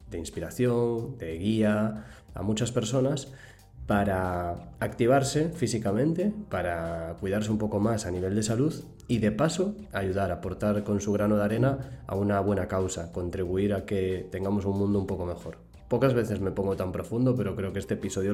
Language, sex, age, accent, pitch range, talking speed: Spanish, male, 20-39, Spanish, 95-120 Hz, 175 wpm